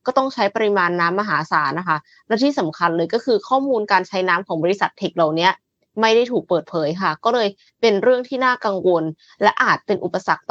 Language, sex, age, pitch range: Thai, female, 20-39, 180-235 Hz